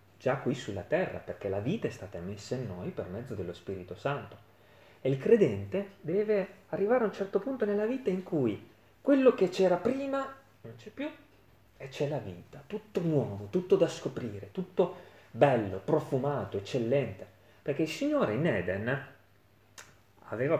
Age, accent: 30-49, native